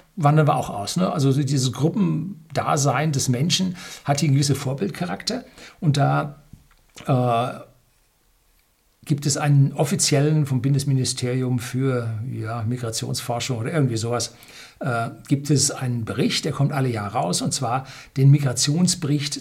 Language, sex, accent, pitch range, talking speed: German, male, German, 130-160 Hz, 125 wpm